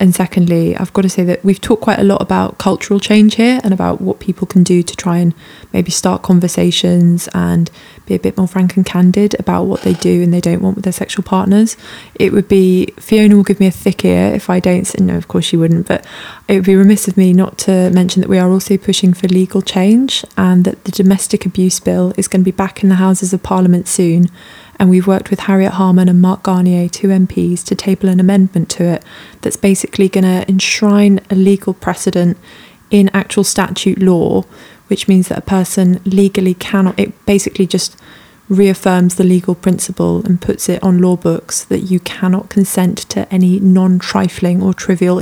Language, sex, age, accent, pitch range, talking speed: English, female, 20-39, British, 180-195 Hz, 210 wpm